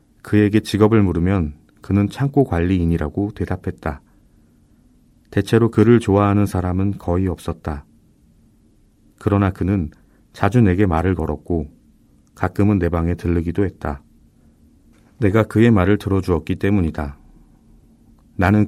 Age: 40-59